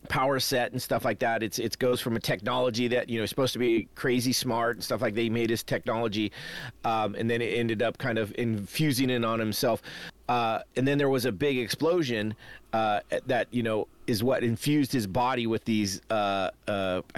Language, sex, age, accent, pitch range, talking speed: English, male, 40-59, American, 115-140 Hz, 210 wpm